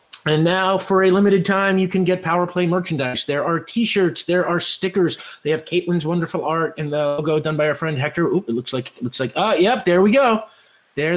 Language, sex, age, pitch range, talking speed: English, male, 30-49, 125-170 Hz, 235 wpm